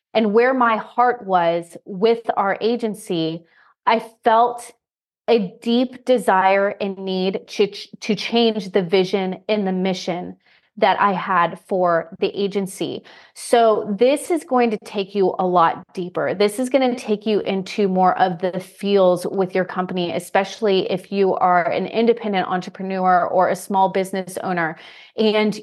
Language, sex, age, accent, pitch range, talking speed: English, female, 30-49, American, 185-225 Hz, 155 wpm